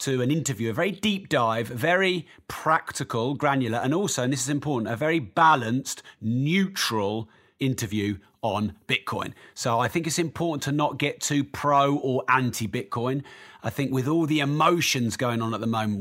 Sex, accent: male, British